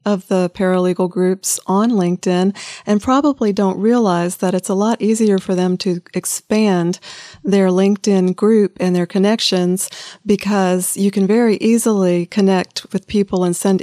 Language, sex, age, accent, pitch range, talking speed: English, female, 40-59, American, 175-200 Hz, 150 wpm